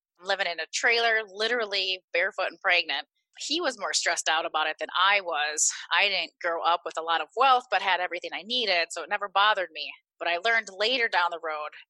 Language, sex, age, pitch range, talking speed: English, female, 20-39, 170-225 Hz, 220 wpm